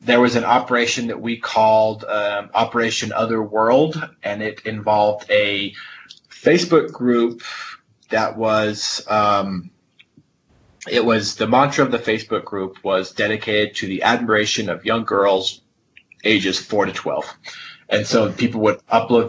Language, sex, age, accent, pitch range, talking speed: English, male, 30-49, American, 100-115 Hz, 135 wpm